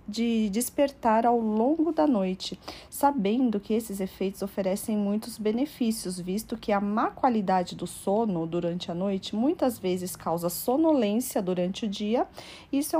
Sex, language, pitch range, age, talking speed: female, Portuguese, 200-260 Hz, 40-59, 150 wpm